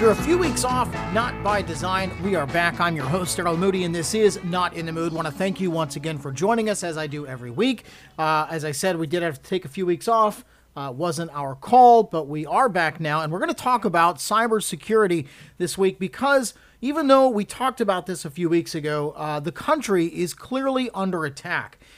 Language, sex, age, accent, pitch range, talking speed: English, male, 40-59, American, 155-205 Hz, 240 wpm